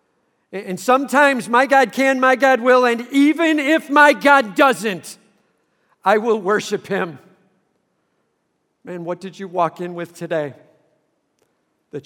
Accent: American